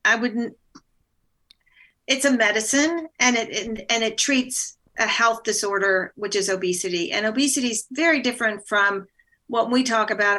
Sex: female